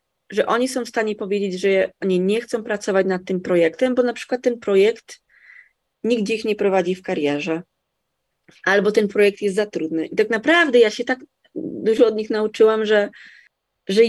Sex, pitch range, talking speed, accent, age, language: female, 190-240 Hz, 185 wpm, native, 20-39, Polish